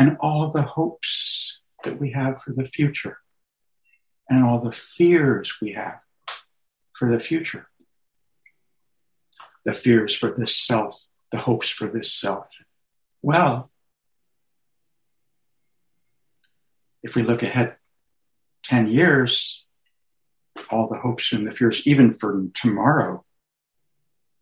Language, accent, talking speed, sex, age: English, American, 110 wpm, male, 60-79